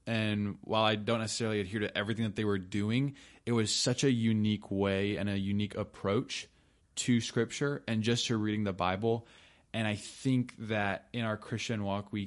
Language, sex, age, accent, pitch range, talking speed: English, male, 20-39, American, 100-115 Hz, 190 wpm